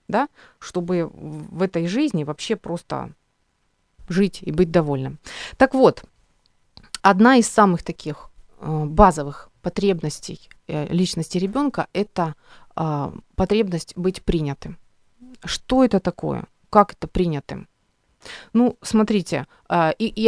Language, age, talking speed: Ukrainian, 30-49, 120 wpm